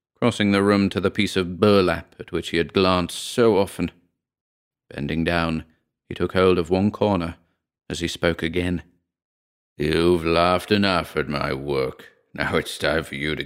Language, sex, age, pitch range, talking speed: English, male, 40-59, 85-105 Hz, 175 wpm